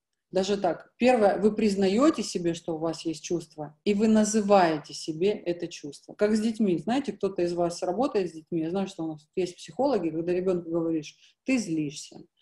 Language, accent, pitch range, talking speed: Russian, native, 165-210 Hz, 190 wpm